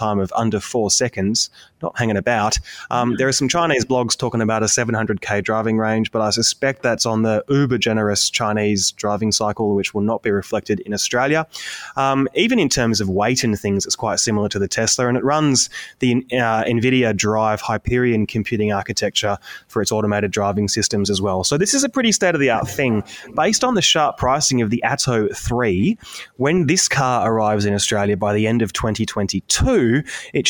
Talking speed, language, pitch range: 190 wpm, English, 105-125 Hz